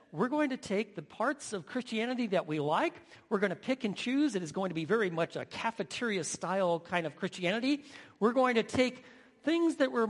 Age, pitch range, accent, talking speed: 50-69, 180-235 Hz, American, 215 wpm